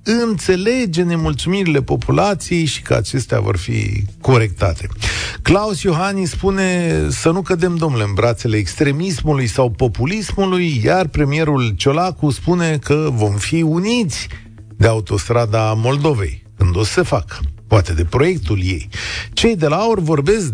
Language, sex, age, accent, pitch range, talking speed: Romanian, male, 50-69, native, 110-160 Hz, 130 wpm